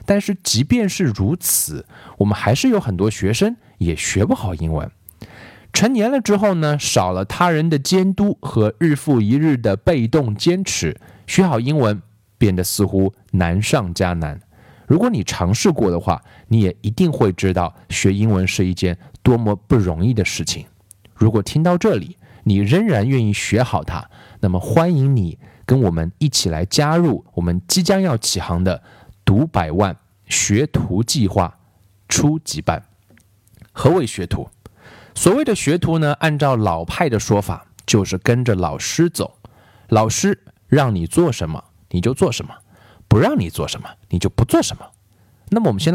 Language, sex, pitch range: Chinese, male, 95-150 Hz